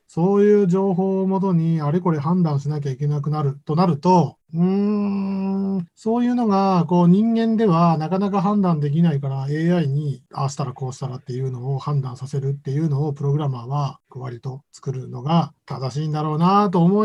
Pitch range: 145-190 Hz